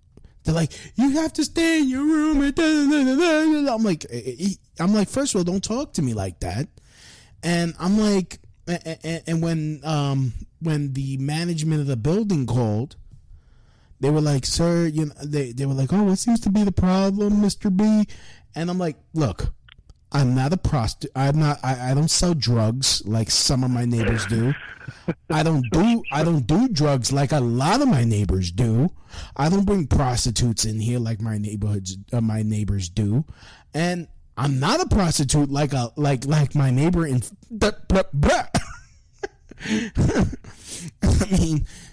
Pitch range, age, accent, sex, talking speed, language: 120-180 Hz, 20-39, American, male, 165 wpm, English